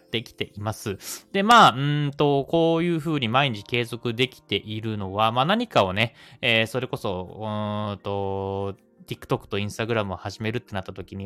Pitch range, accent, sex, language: 105-150 Hz, native, male, Japanese